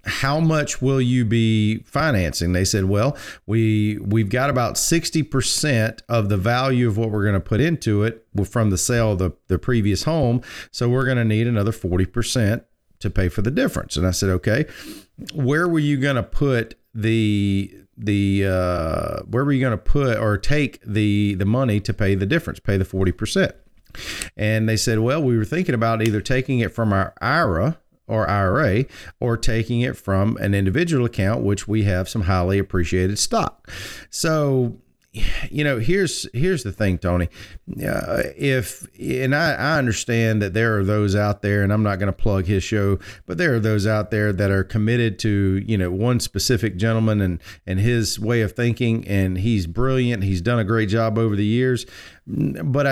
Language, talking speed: English, 190 wpm